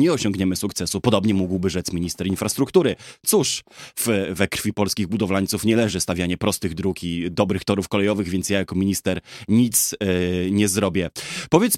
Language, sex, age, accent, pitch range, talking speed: Polish, male, 20-39, native, 90-110 Hz, 155 wpm